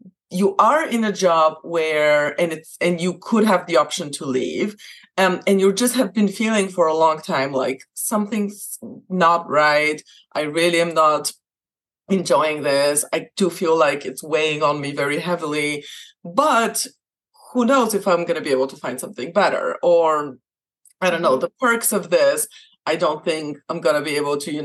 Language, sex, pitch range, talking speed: English, female, 155-210 Hz, 190 wpm